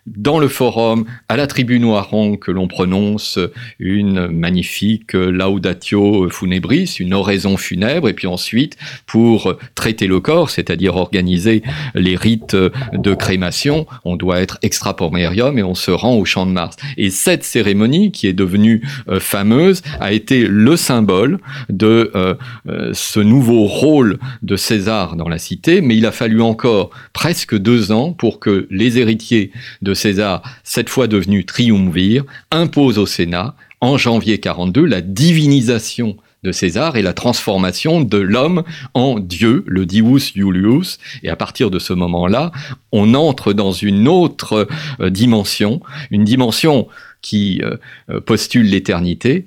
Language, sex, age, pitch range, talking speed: French, male, 50-69, 95-125 Hz, 145 wpm